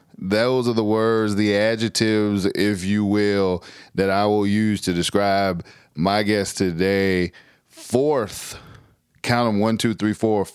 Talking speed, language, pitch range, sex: 140 wpm, English, 100-120 Hz, male